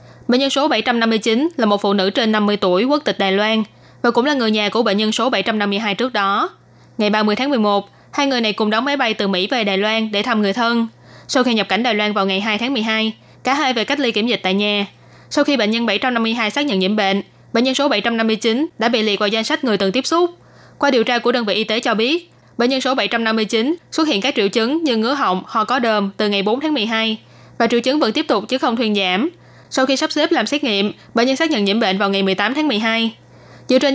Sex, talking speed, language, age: female, 265 wpm, Vietnamese, 20-39